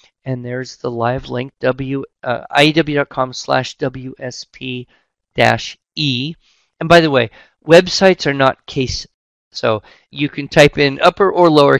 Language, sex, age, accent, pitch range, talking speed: English, male, 40-59, American, 125-165 Hz, 130 wpm